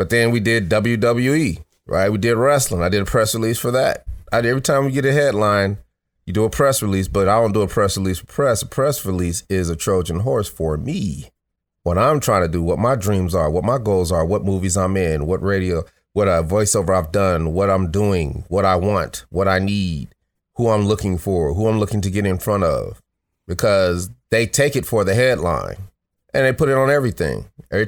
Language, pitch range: English, 90-115 Hz